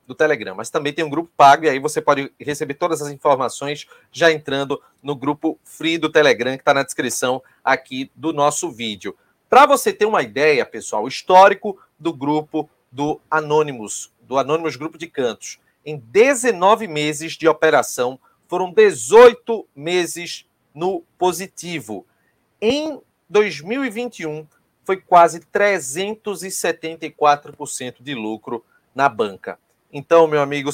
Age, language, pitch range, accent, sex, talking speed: 40-59, Portuguese, 145-180 Hz, Brazilian, male, 135 wpm